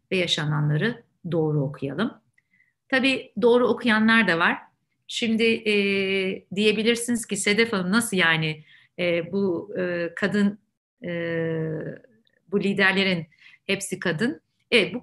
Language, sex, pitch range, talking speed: Turkish, female, 160-215 Hz, 95 wpm